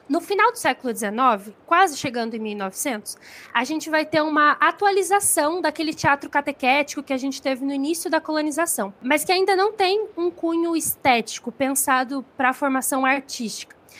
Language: Portuguese